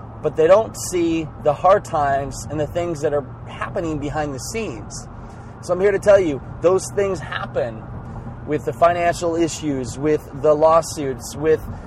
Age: 20-39